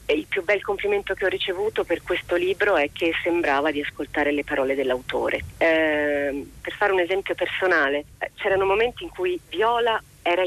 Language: Italian